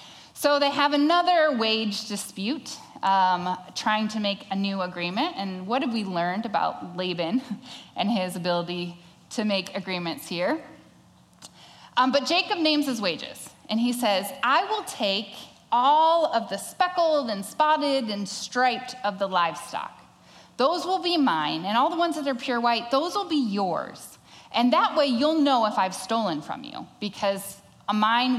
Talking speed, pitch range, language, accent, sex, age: 165 wpm, 195-285 Hz, English, American, female, 10-29